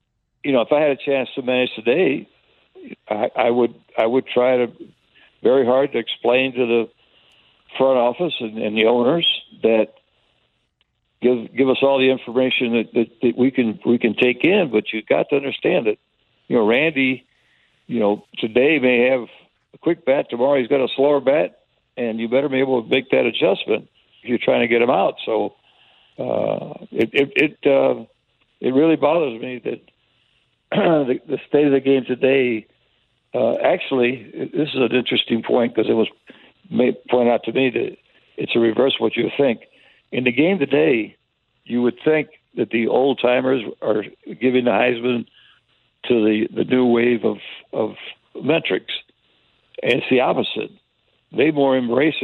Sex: male